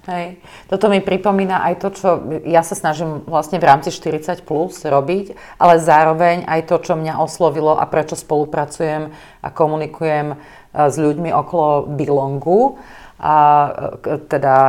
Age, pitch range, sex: 40-59, 145-165 Hz, female